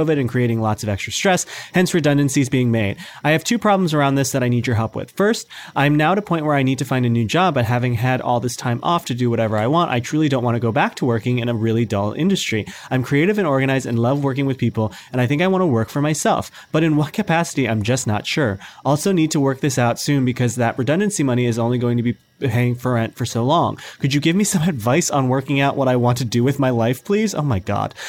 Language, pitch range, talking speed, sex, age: English, 120-155 Hz, 280 wpm, male, 30-49